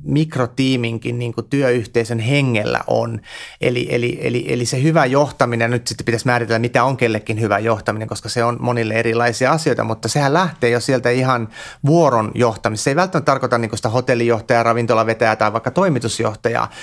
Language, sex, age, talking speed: Finnish, male, 30-49, 160 wpm